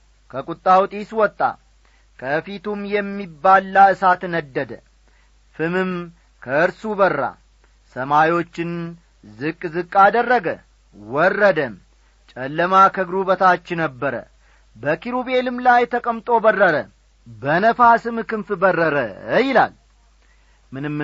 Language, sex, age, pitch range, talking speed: Amharic, male, 40-59, 165-210 Hz, 75 wpm